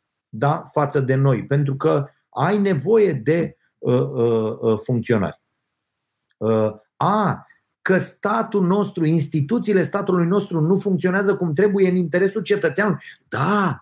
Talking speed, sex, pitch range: 125 wpm, male, 140-200 Hz